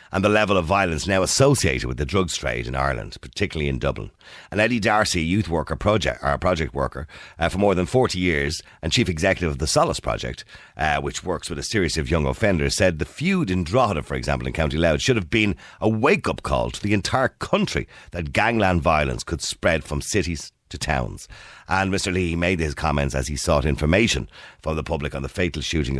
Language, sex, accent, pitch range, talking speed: English, male, Irish, 70-90 Hz, 215 wpm